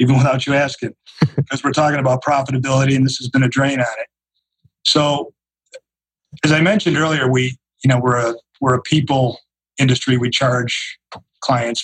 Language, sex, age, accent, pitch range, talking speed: English, male, 40-59, American, 120-135 Hz, 170 wpm